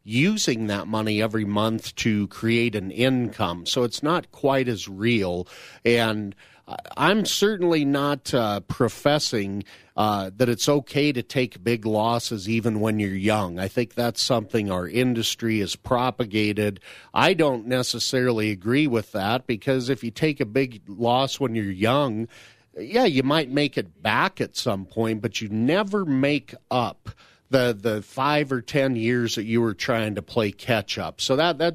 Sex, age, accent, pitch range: male, 40-59, American, 105-130 Hz